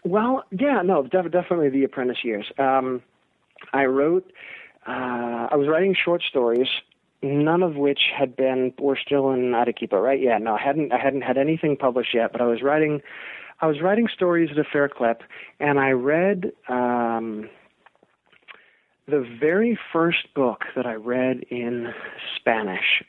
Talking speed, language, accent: 160 wpm, English, American